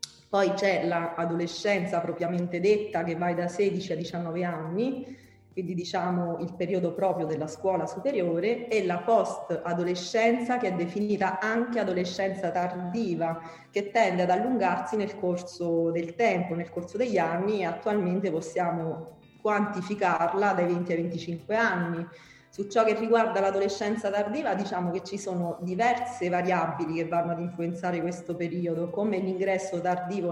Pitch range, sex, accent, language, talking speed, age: 170-205 Hz, female, native, Italian, 140 wpm, 30-49